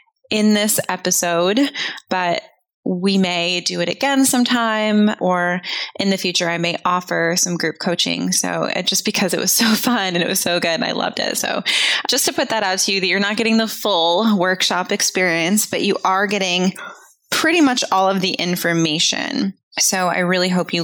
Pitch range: 175-215 Hz